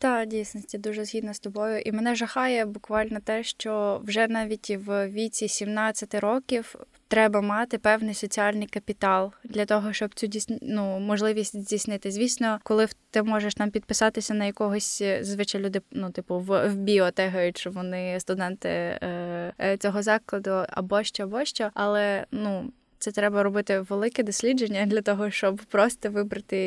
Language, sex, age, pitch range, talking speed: Ukrainian, female, 10-29, 195-215 Hz, 155 wpm